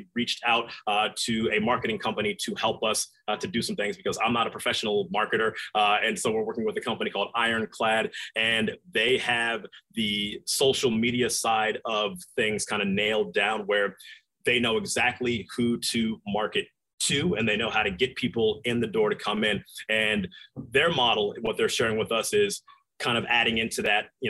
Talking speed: 200 wpm